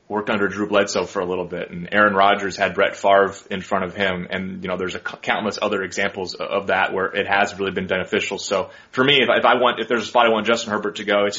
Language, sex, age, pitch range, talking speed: English, male, 30-49, 100-125 Hz, 280 wpm